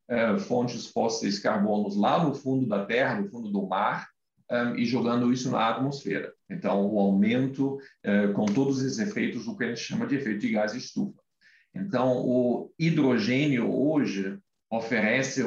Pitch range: 115-160 Hz